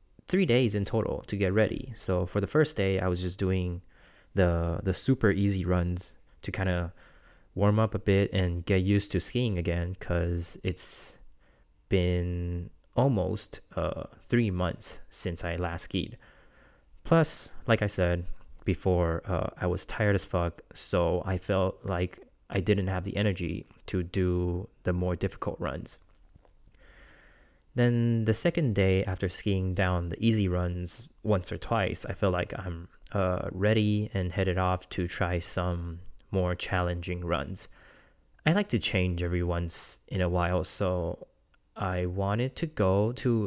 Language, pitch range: Chinese, 90-105 Hz